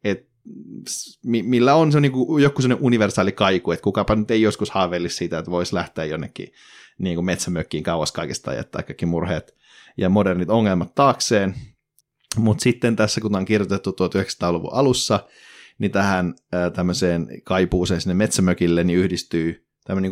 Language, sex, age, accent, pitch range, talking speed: Finnish, male, 30-49, native, 90-105 Hz, 140 wpm